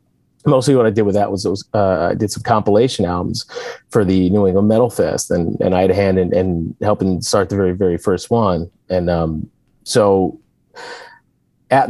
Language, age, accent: English, 30-49, American